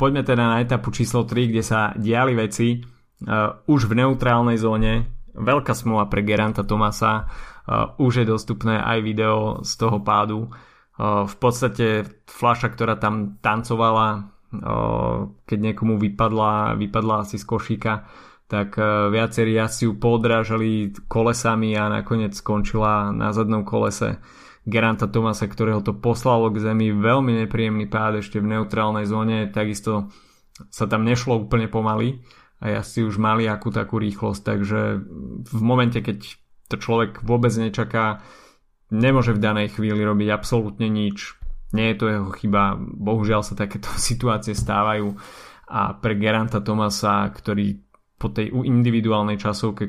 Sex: male